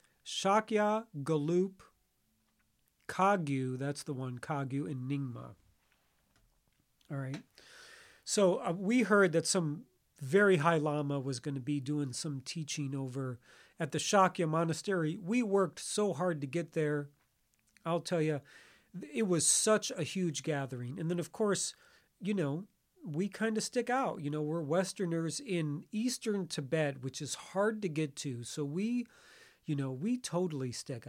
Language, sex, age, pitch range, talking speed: English, male, 40-59, 150-205 Hz, 155 wpm